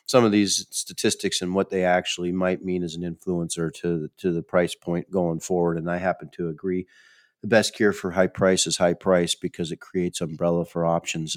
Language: English